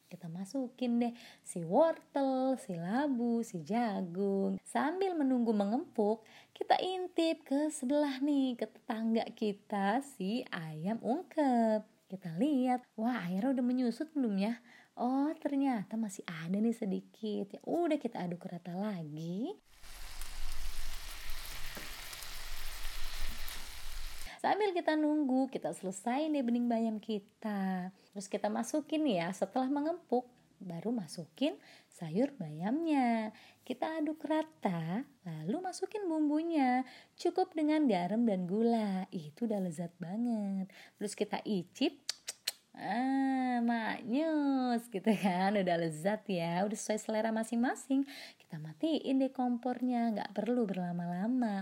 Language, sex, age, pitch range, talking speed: Indonesian, female, 20-39, 195-270 Hz, 115 wpm